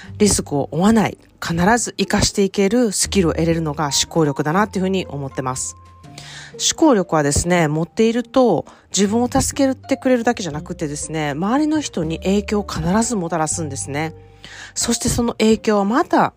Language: Japanese